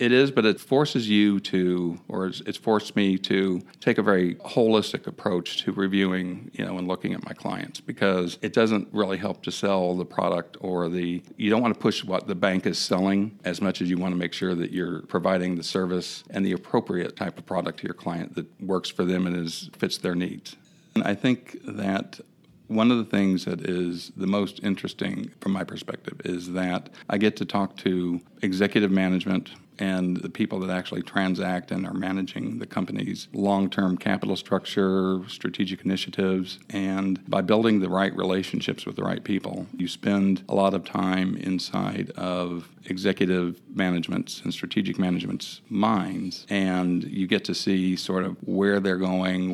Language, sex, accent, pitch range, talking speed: English, male, American, 90-100 Hz, 185 wpm